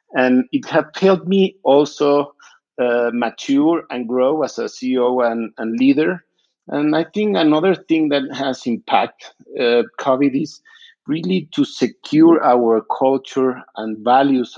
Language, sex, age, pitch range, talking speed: English, male, 50-69, 115-150 Hz, 145 wpm